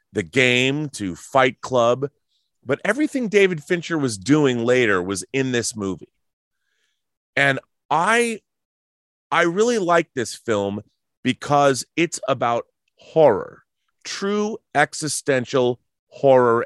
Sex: male